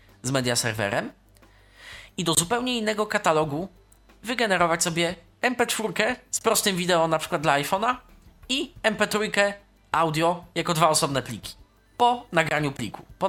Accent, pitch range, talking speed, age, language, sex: native, 130-185 Hz, 125 wpm, 20-39, Polish, male